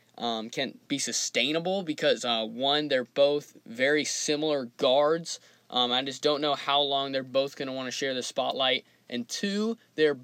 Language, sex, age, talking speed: English, male, 20-39, 180 wpm